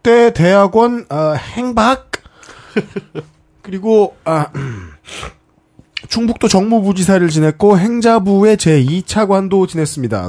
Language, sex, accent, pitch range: Korean, male, native, 155-220 Hz